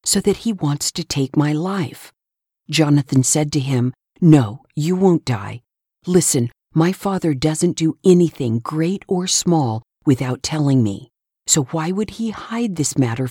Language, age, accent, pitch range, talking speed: English, 50-69, American, 135-180 Hz, 160 wpm